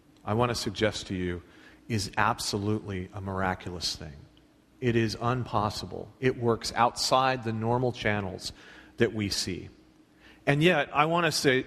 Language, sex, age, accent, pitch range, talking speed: English, male, 40-59, American, 110-180 Hz, 150 wpm